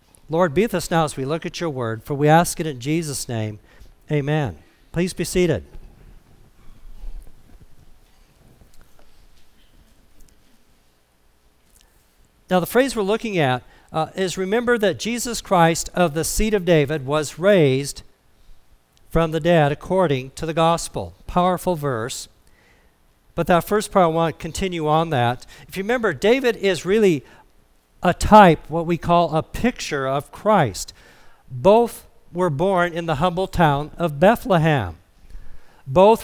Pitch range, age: 135-185 Hz, 50-69